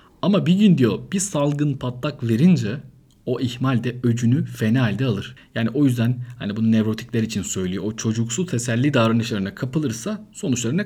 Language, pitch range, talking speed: Turkish, 105-135 Hz, 155 wpm